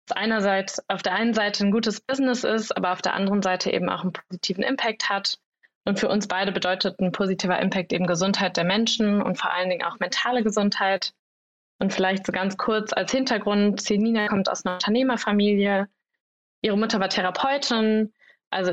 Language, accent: German, German